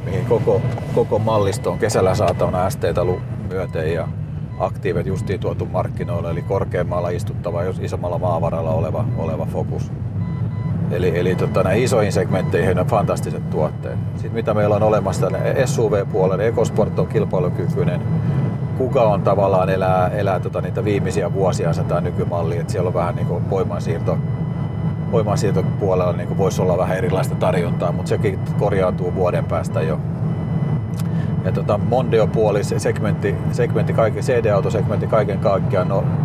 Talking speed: 130 wpm